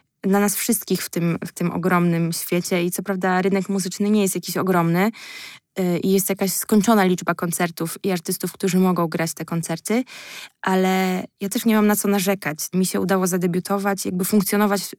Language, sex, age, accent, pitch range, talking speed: Polish, female, 20-39, native, 185-215 Hz, 175 wpm